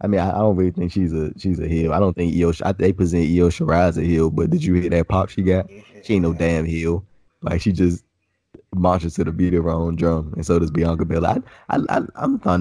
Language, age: English, 20-39